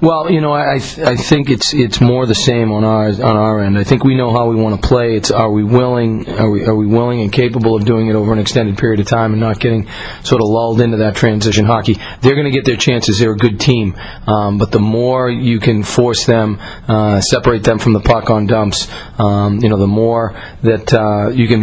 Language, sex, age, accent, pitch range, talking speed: English, male, 40-59, American, 105-120 Hz, 250 wpm